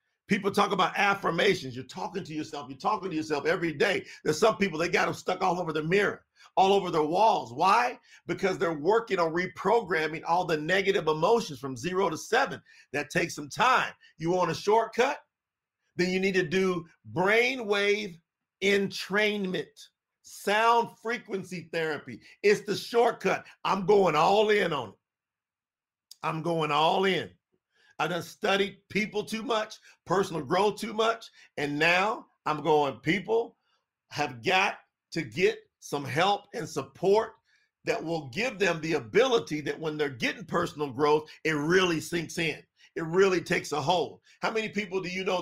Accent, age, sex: American, 50-69, male